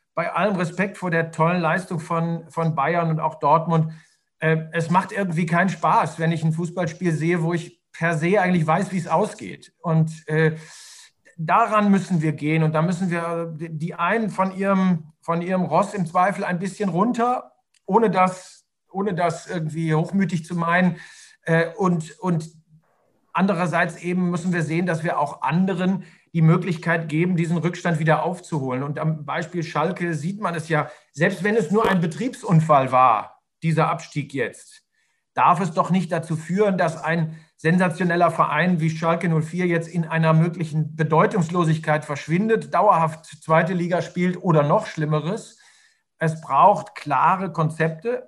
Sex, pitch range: male, 160-185 Hz